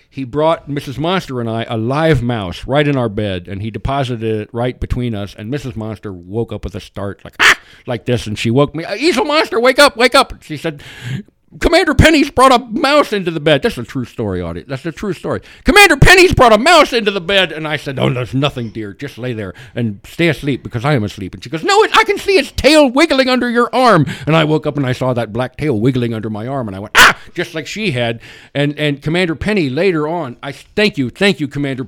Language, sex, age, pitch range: English, male, 60-79, 105-155 Hz